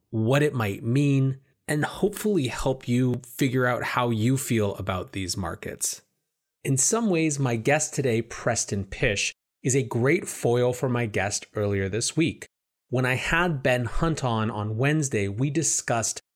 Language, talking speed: English, 160 wpm